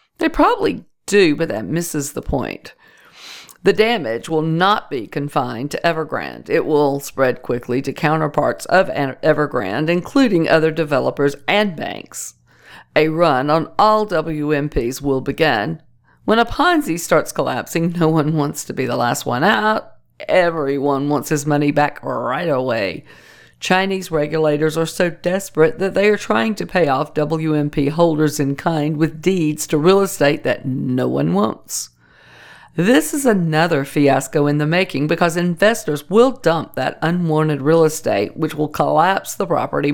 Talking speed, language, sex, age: 155 wpm, English, female, 50-69